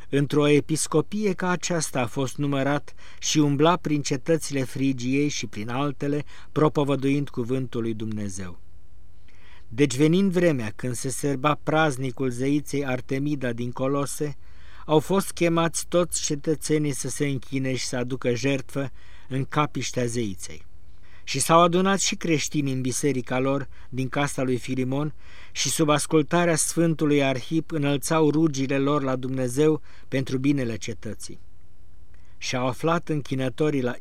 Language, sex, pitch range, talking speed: Romanian, male, 125-155 Hz, 130 wpm